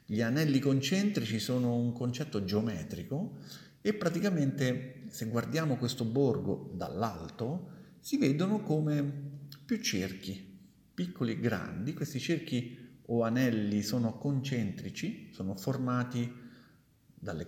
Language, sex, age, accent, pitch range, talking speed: Italian, male, 50-69, native, 105-140 Hz, 105 wpm